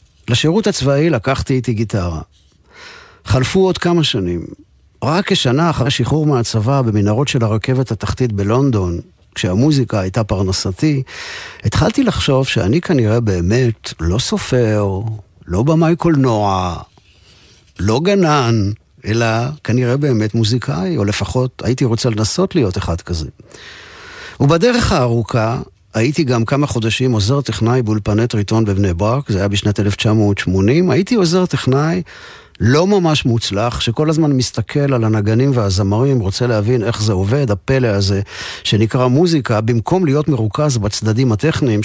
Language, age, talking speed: Hebrew, 50-69, 125 wpm